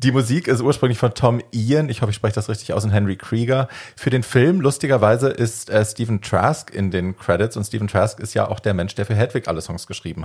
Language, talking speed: German, 245 wpm